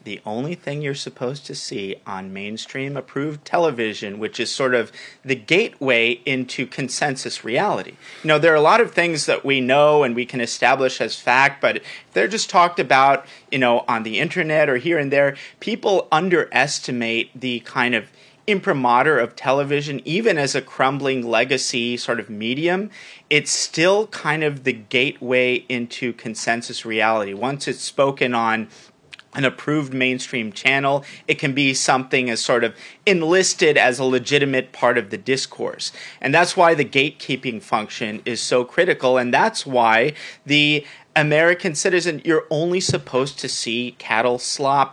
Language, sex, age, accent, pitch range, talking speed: English, male, 30-49, American, 125-155 Hz, 160 wpm